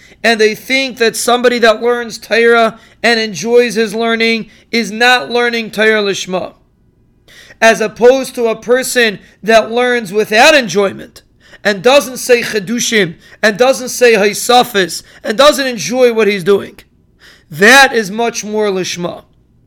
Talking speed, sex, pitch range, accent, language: 135 wpm, male, 220-245 Hz, American, English